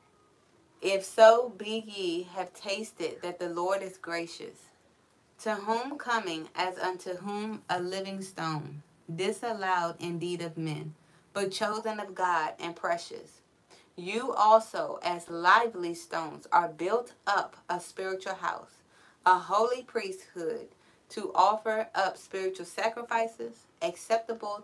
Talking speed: 120 wpm